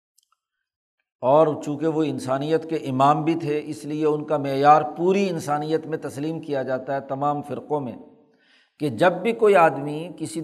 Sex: male